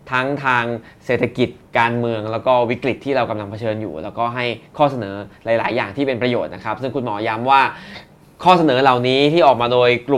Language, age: Thai, 20-39